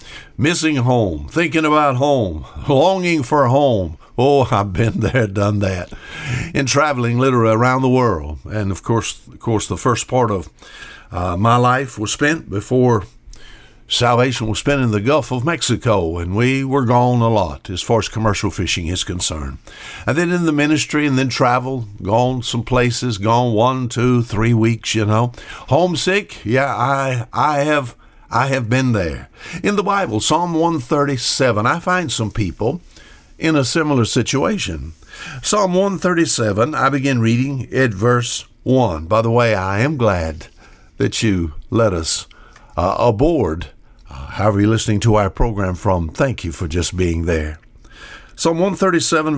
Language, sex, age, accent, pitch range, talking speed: English, male, 60-79, American, 105-140 Hz, 160 wpm